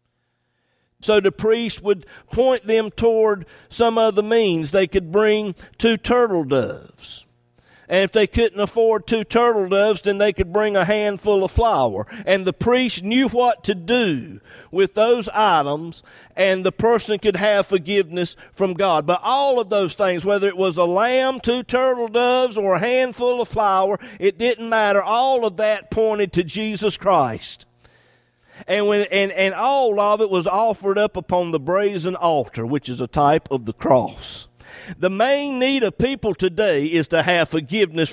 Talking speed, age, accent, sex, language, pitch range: 170 wpm, 50-69, American, male, English, 190-250 Hz